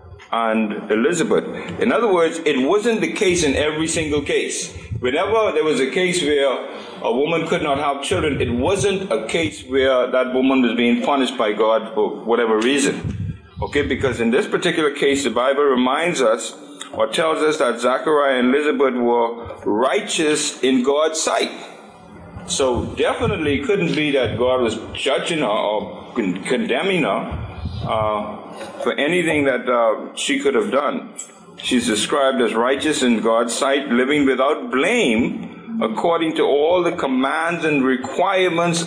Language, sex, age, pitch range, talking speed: English, male, 50-69, 120-165 Hz, 155 wpm